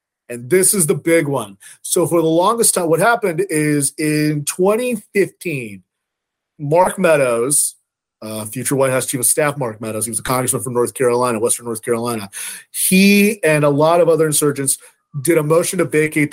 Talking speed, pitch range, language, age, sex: 180 wpm, 135-190 Hz, English, 30-49, male